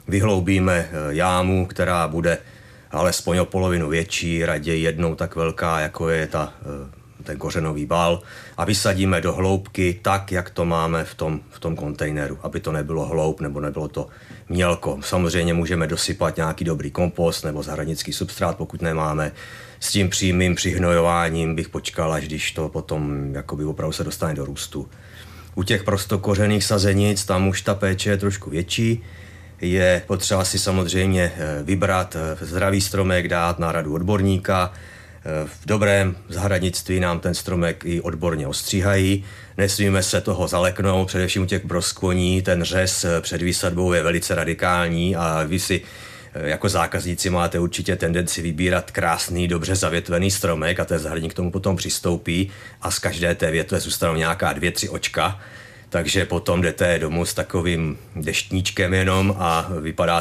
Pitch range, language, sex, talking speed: 80-95 Hz, Czech, male, 150 wpm